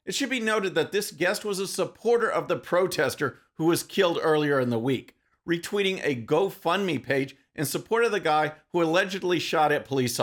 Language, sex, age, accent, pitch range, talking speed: English, male, 50-69, American, 150-200 Hz, 200 wpm